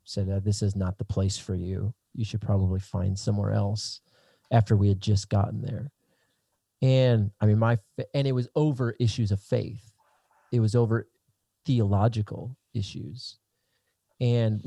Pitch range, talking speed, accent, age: 105-125 Hz, 160 wpm, American, 30-49